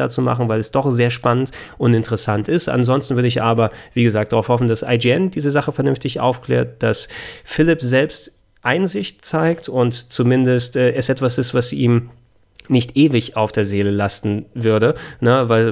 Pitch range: 110-125 Hz